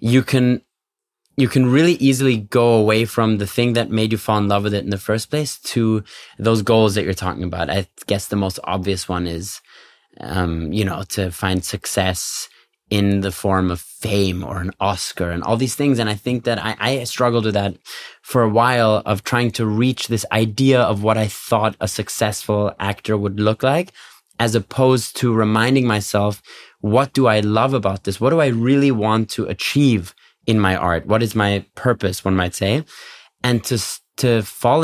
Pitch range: 100-120 Hz